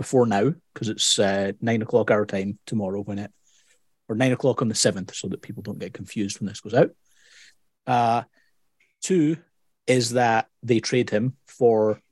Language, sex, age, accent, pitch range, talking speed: English, male, 30-49, British, 105-130 Hz, 180 wpm